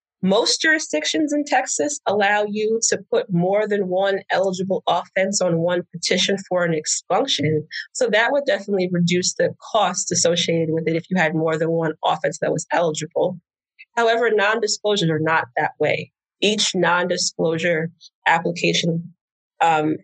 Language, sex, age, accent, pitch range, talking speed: English, female, 20-39, American, 165-215 Hz, 155 wpm